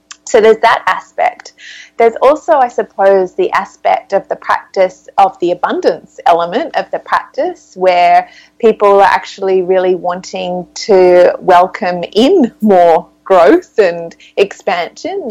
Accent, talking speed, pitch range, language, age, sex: Australian, 130 wpm, 175-220 Hz, English, 30-49, female